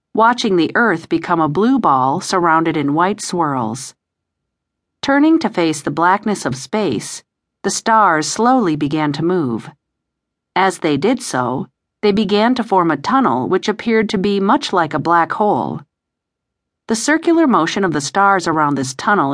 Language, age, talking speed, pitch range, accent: English, 50-69, 160 wpm, 155-225 Hz, American